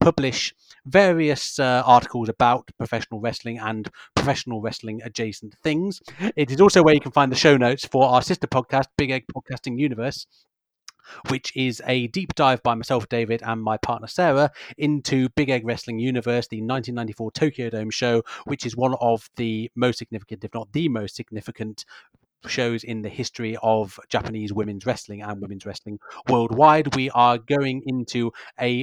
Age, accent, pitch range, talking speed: 30-49, British, 110-130 Hz, 170 wpm